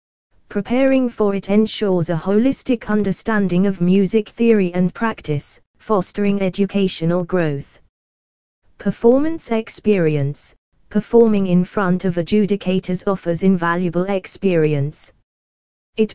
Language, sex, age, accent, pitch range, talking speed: English, female, 20-39, British, 175-210 Hz, 95 wpm